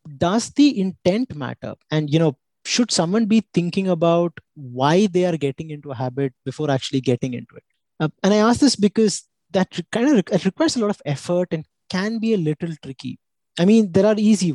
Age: 20-39